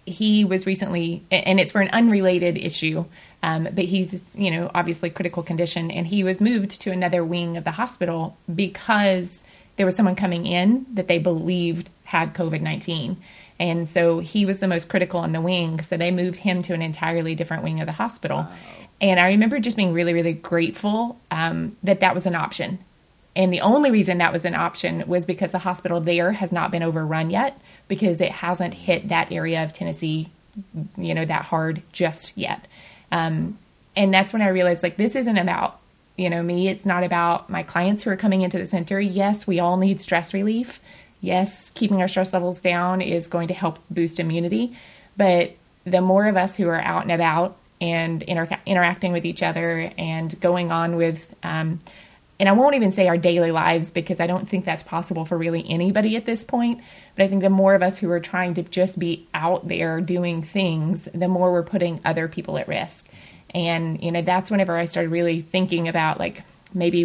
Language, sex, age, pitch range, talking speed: English, female, 20-39, 170-190 Hz, 200 wpm